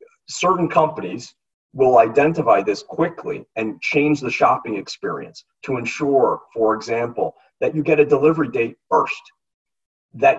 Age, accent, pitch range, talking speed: 40-59, American, 115-150 Hz, 135 wpm